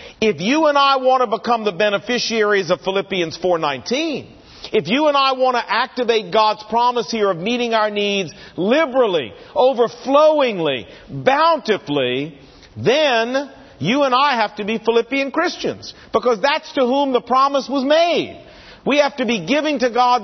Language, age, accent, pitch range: English, 50-69, American, 180-255 Hz